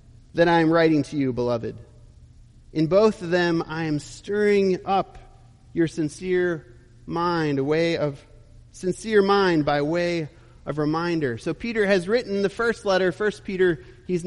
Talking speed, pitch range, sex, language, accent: 155 wpm, 125-195 Hz, male, English, American